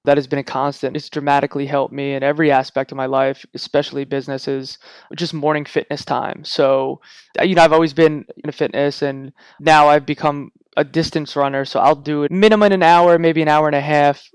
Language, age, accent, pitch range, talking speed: English, 20-39, American, 145-170 Hz, 205 wpm